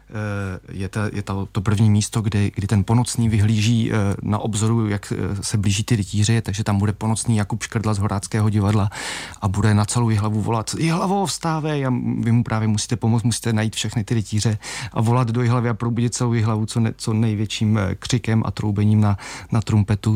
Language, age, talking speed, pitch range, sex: Czech, 30-49, 190 wpm, 100-115 Hz, male